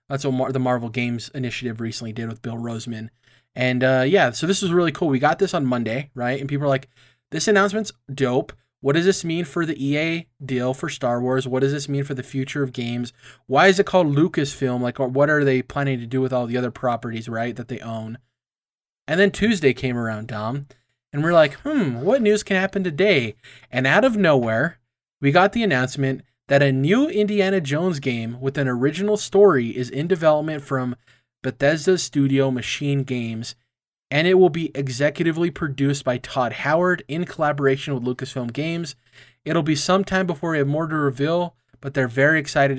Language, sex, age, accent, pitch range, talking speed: English, male, 20-39, American, 125-165 Hz, 200 wpm